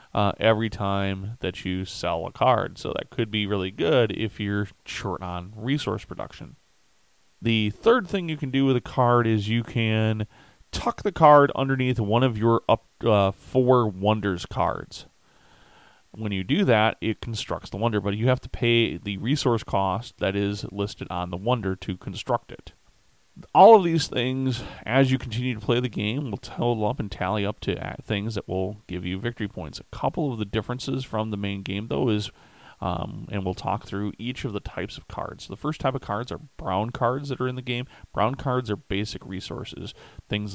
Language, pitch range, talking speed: English, 95-120 Hz, 200 wpm